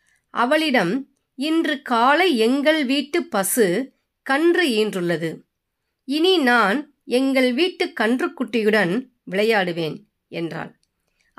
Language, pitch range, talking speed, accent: Tamil, 210-285 Hz, 80 wpm, native